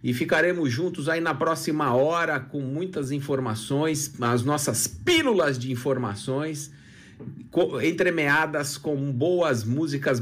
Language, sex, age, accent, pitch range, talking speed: Portuguese, male, 50-69, Brazilian, 135-175 Hz, 110 wpm